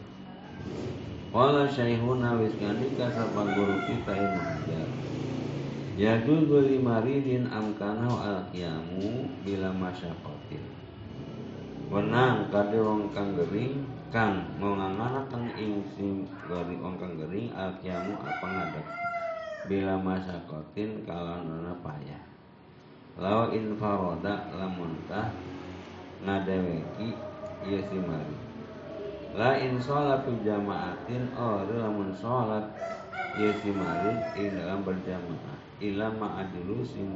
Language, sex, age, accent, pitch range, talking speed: Indonesian, male, 50-69, native, 95-115 Hz, 85 wpm